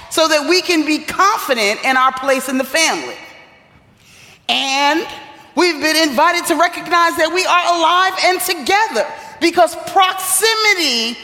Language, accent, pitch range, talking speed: English, American, 245-350 Hz, 140 wpm